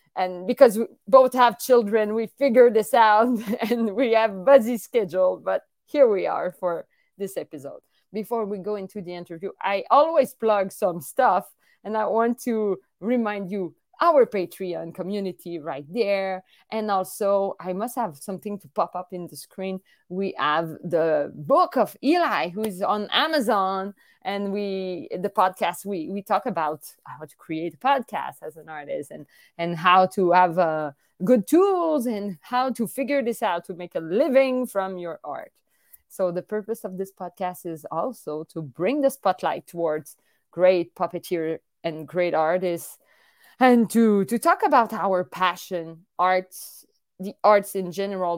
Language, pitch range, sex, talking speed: English, 170-225 Hz, female, 165 wpm